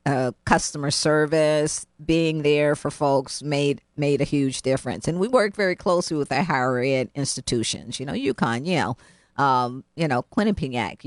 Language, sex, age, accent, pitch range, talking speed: English, female, 50-69, American, 130-155 Hz, 165 wpm